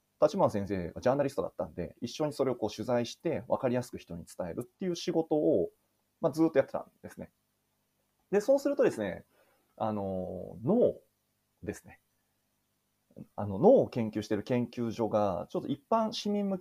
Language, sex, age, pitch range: Japanese, male, 30-49, 100-160 Hz